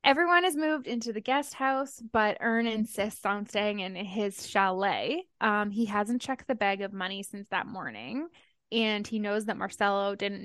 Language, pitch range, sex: English, 200-240 Hz, female